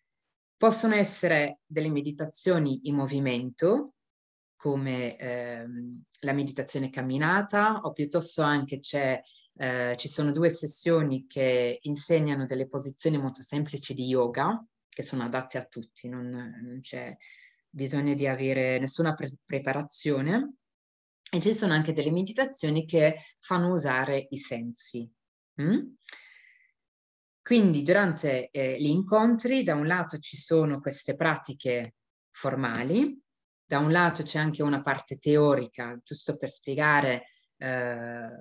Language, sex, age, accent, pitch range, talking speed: Italian, female, 30-49, native, 130-165 Hz, 125 wpm